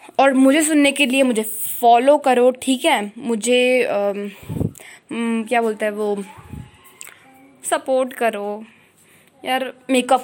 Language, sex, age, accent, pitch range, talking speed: Hindi, female, 20-39, native, 220-275 Hz, 125 wpm